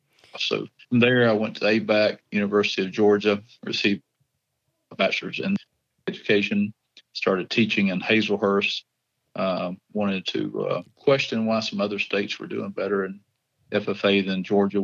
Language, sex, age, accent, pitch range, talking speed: English, male, 40-59, American, 100-120 Hz, 140 wpm